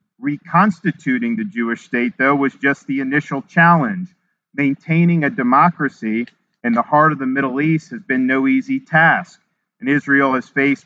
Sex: male